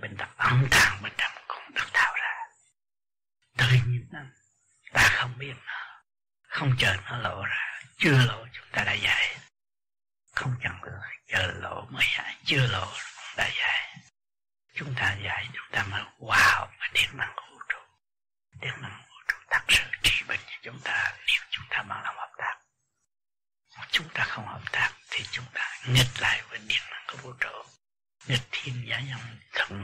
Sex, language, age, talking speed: male, Vietnamese, 60-79, 180 wpm